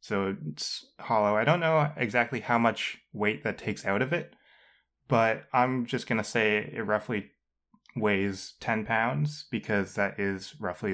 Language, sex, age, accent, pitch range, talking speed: English, male, 20-39, American, 95-120 Hz, 165 wpm